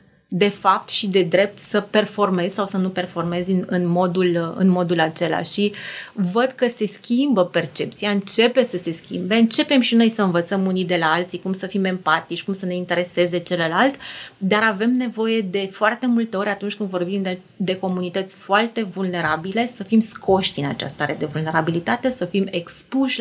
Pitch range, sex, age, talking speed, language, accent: 180-220 Hz, female, 30-49, 180 wpm, Romanian, native